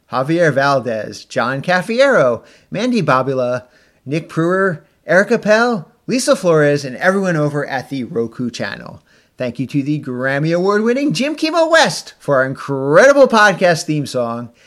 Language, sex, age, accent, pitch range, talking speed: English, male, 30-49, American, 130-205 Hz, 140 wpm